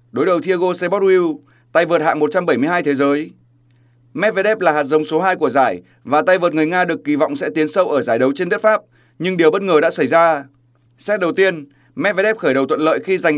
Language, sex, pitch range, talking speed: Vietnamese, male, 140-180 Hz, 235 wpm